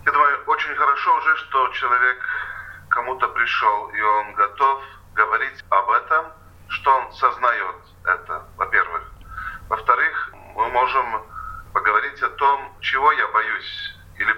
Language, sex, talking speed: Russian, male, 125 wpm